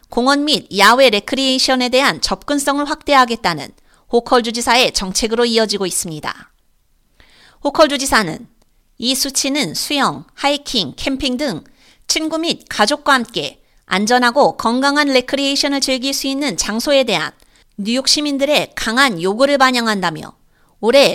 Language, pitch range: Korean, 230-285 Hz